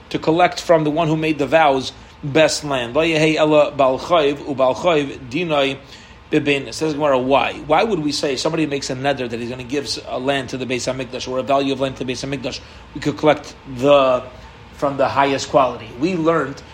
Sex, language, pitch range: male, English, 135-155 Hz